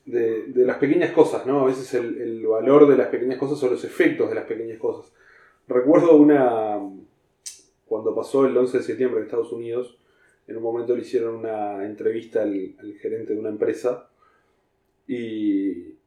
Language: Spanish